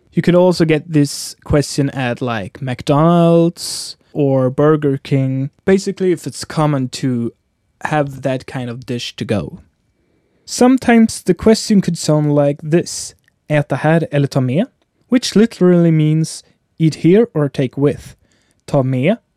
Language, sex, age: English, male, 20-39